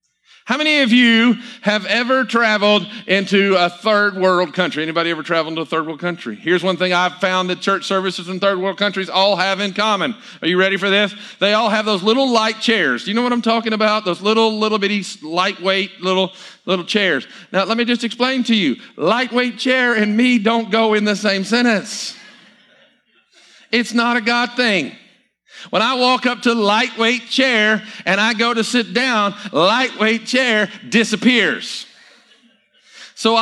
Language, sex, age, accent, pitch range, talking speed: English, male, 50-69, American, 195-235 Hz, 185 wpm